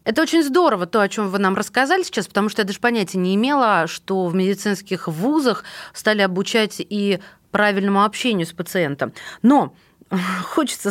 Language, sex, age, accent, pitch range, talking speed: Russian, female, 30-49, native, 190-245 Hz, 165 wpm